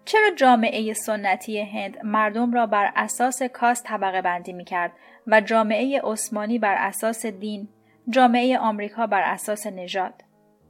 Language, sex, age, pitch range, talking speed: Persian, female, 30-49, 210-265 Hz, 130 wpm